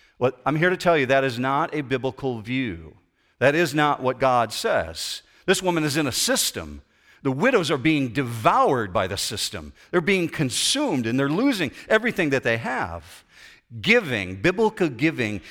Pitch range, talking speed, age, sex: 115-170 Hz, 175 wpm, 50-69, male